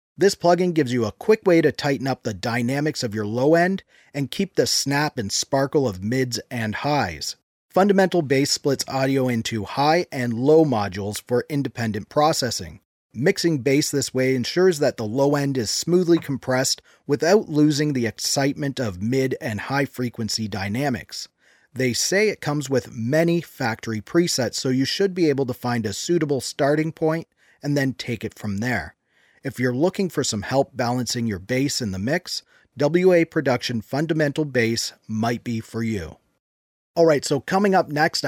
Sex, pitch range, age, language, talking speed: male, 120-160 Hz, 30-49, English, 170 wpm